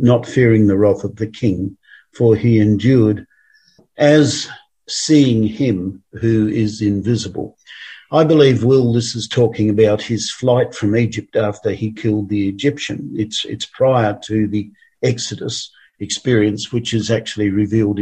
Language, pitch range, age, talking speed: English, 110-140 Hz, 50-69, 145 wpm